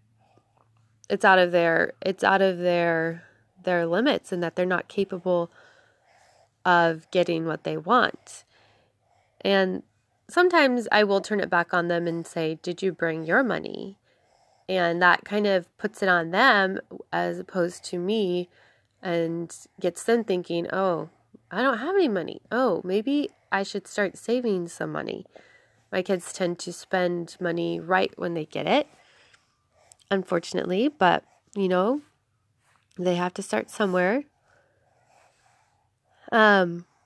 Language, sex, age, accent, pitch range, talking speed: English, female, 20-39, American, 175-205 Hz, 140 wpm